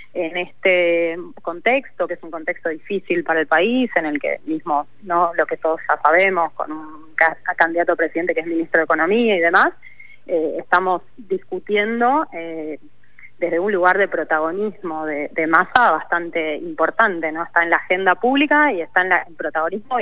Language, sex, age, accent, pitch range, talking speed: Spanish, female, 20-39, Spanish, 160-190 Hz, 170 wpm